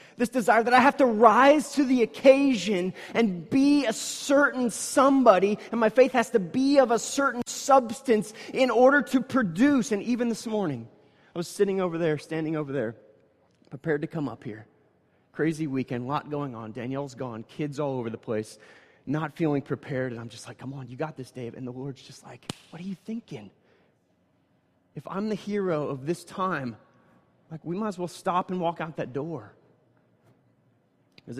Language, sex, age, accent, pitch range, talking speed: English, male, 30-49, American, 150-220 Hz, 190 wpm